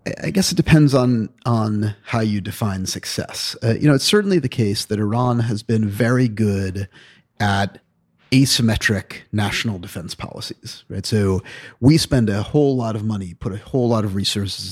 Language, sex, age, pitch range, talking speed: English, male, 40-59, 100-120 Hz, 175 wpm